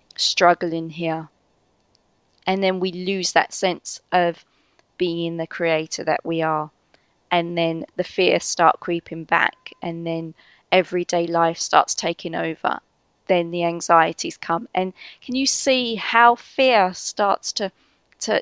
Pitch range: 170-205 Hz